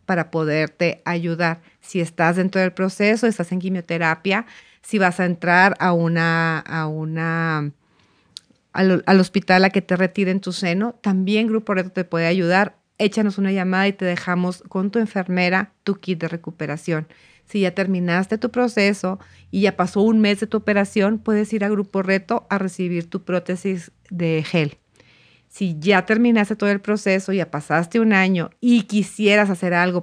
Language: Spanish